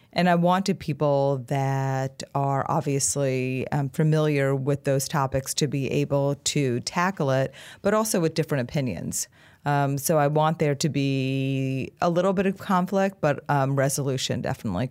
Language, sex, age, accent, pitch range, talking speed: English, female, 30-49, American, 135-155 Hz, 155 wpm